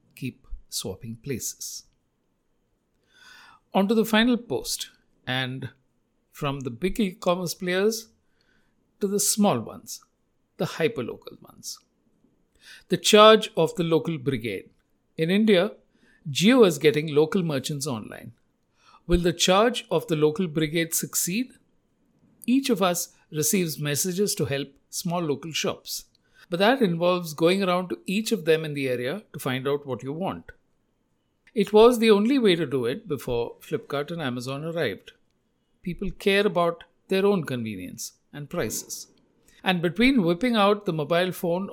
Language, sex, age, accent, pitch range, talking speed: English, male, 60-79, Indian, 145-205 Hz, 140 wpm